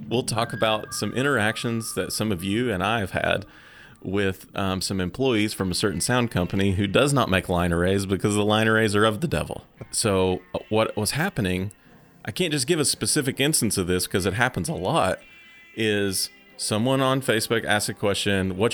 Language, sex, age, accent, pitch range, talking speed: English, male, 30-49, American, 95-125 Hz, 200 wpm